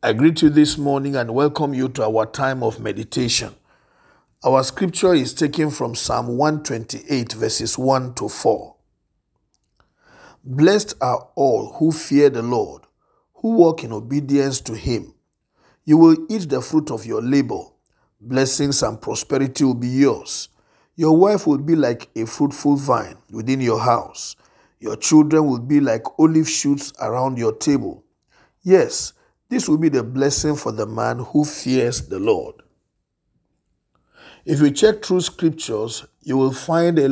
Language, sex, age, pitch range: English, male, 50-69, 125-160 Hz